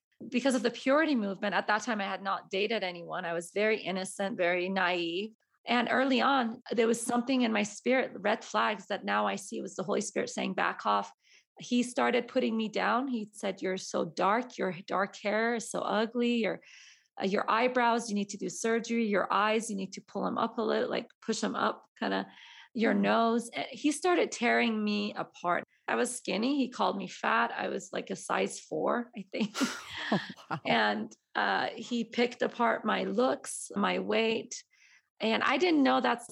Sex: female